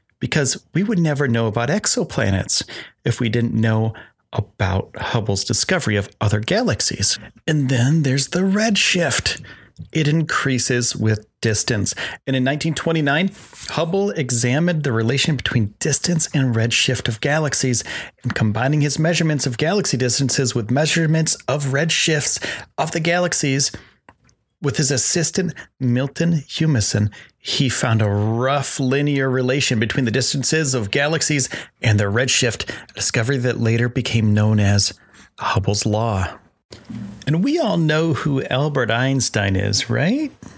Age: 40-59